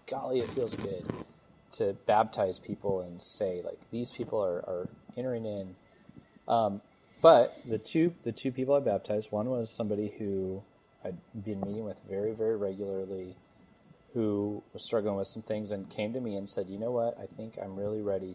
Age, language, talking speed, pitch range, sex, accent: 30-49, English, 185 wpm, 95-115 Hz, male, American